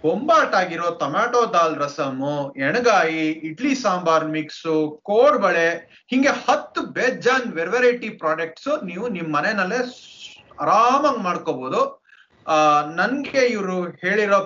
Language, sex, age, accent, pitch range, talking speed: Kannada, male, 30-49, native, 165-245 Hz, 85 wpm